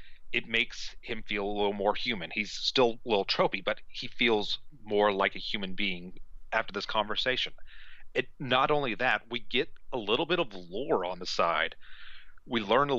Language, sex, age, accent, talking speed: English, male, 30-49, American, 190 wpm